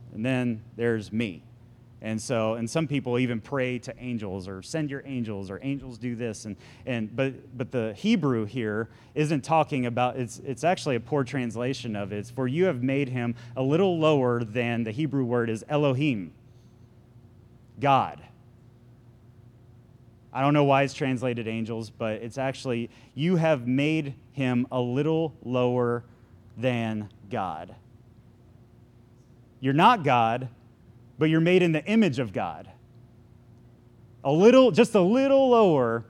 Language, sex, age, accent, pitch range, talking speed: English, male, 30-49, American, 120-145 Hz, 150 wpm